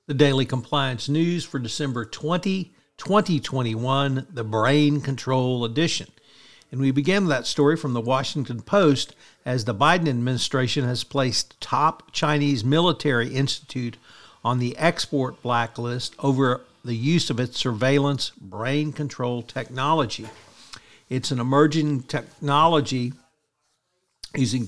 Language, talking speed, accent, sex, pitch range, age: English, 120 wpm, American, male, 120-145 Hz, 60-79